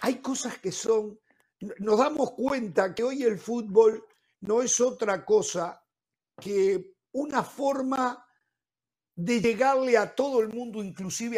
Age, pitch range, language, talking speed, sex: 50-69, 195-265 Hz, Spanish, 130 wpm, male